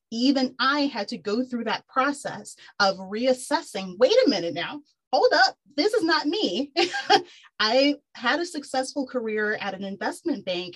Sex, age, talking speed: female, 30-49, 160 wpm